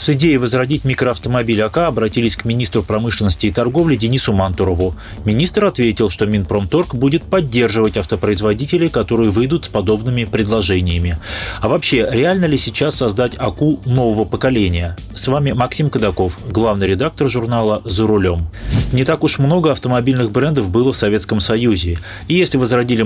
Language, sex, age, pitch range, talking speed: Russian, male, 30-49, 105-135 Hz, 145 wpm